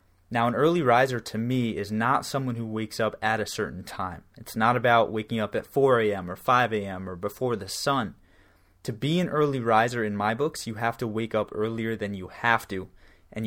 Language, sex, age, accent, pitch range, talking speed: English, male, 20-39, American, 105-125 Hz, 225 wpm